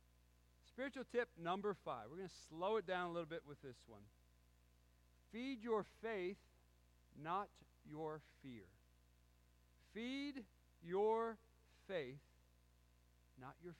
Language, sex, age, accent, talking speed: English, male, 40-59, American, 115 wpm